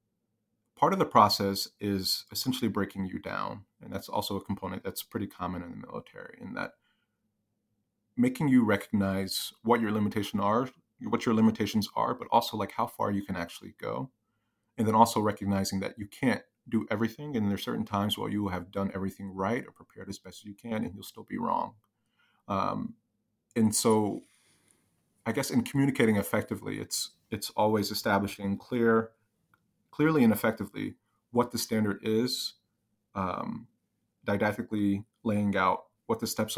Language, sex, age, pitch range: English, male, 30-49, 100-115 Hz